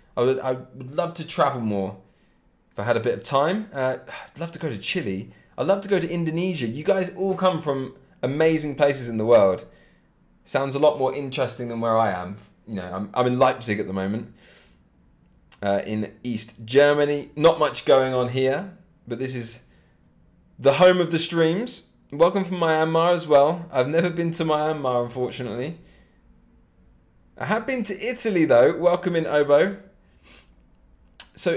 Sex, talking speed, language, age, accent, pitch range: male, 180 wpm, English, 20-39, British, 110-165 Hz